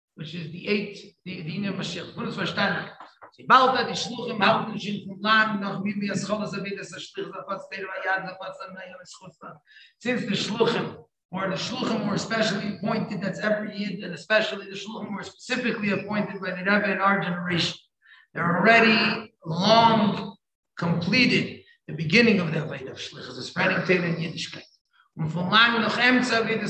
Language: English